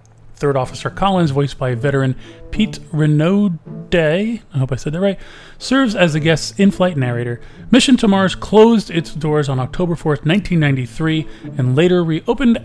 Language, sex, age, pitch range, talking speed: English, male, 30-49, 135-185 Hz, 160 wpm